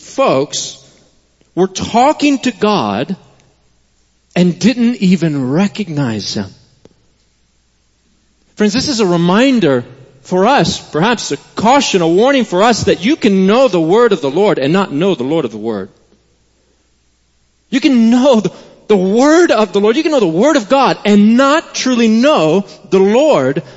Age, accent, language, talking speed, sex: 40-59, American, English, 160 wpm, male